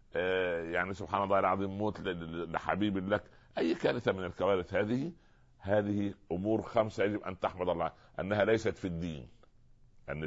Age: 60-79